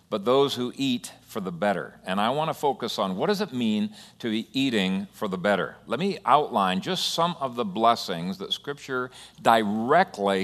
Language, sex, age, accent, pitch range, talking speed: English, male, 50-69, American, 105-160 Hz, 195 wpm